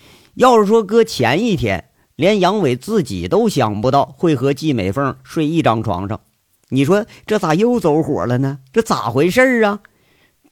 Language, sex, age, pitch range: Chinese, male, 50-69, 120-170 Hz